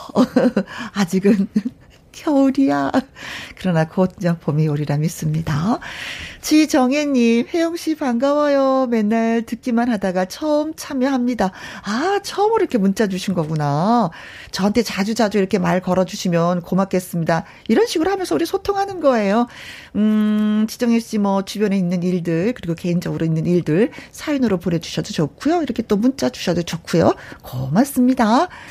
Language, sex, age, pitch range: Korean, female, 40-59, 185-265 Hz